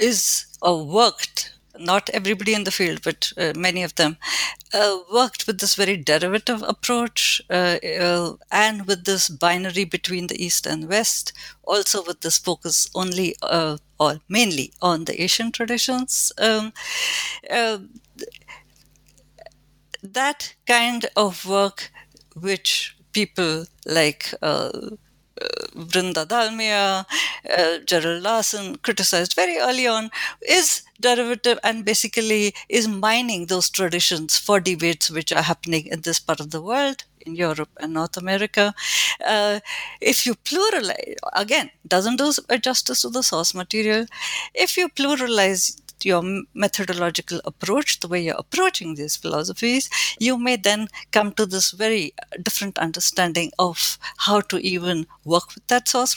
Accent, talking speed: Indian, 135 wpm